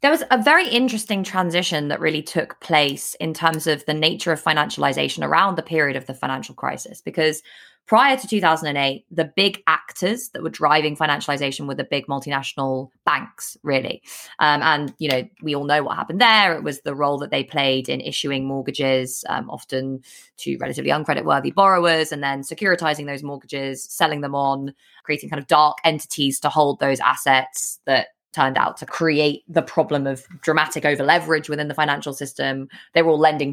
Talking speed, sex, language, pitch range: 185 wpm, female, English, 135-160 Hz